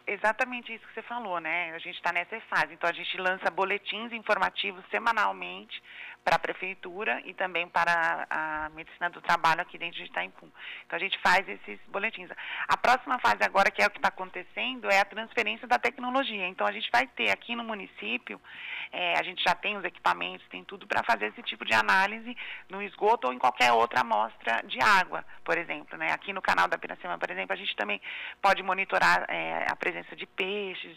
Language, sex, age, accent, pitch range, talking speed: Portuguese, female, 30-49, Brazilian, 175-225 Hz, 205 wpm